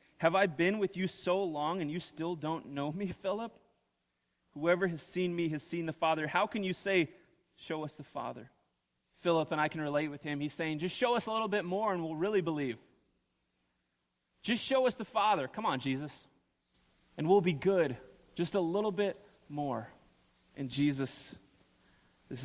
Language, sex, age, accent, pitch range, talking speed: English, male, 30-49, American, 135-180 Hz, 185 wpm